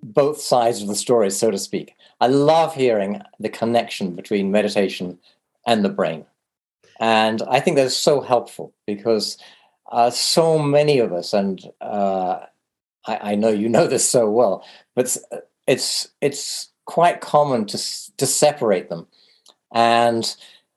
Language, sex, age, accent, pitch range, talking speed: English, male, 40-59, British, 100-125 Hz, 145 wpm